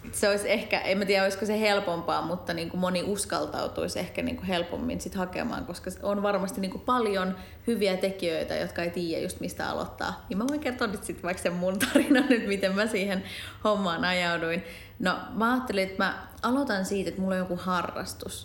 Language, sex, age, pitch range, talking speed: Finnish, female, 30-49, 175-215 Hz, 190 wpm